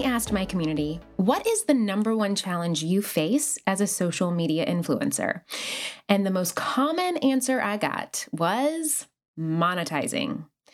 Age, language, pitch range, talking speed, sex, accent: 20-39, English, 195-290 Hz, 140 wpm, female, American